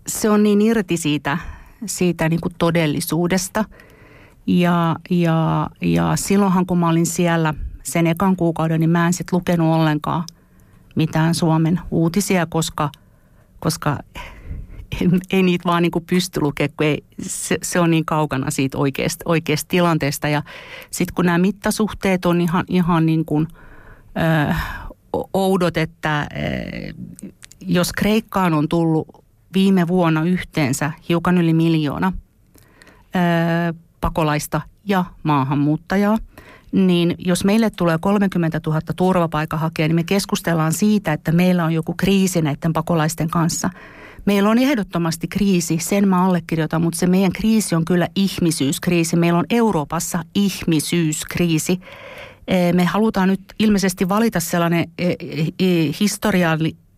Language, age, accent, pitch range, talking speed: Finnish, 50-69, native, 160-185 Hz, 125 wpm